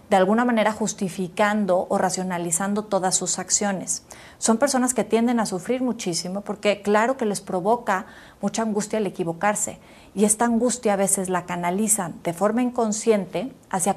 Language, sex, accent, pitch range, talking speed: Spanish, female, Mexican, 190-230 Hz, 155 wpm